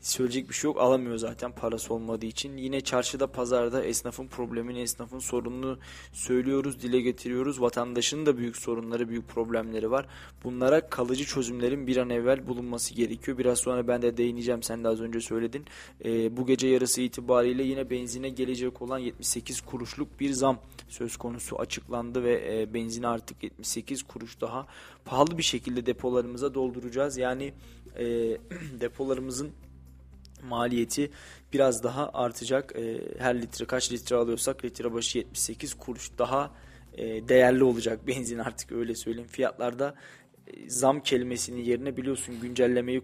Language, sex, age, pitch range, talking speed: Turkish, male, 20-39, 115-130 Hz, 140 wpm